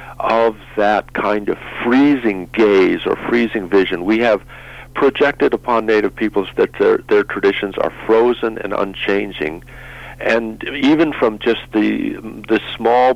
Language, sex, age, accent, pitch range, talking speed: English, male, 50-69, American, 105-135 Hz, 135 wpm